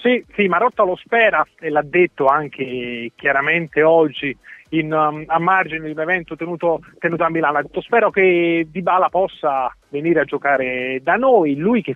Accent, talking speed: native, 170 wpm